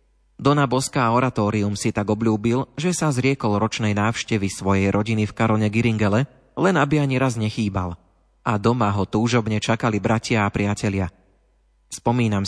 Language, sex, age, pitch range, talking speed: Slovak, male, 30-49, 105-125 Hz, 145 wpm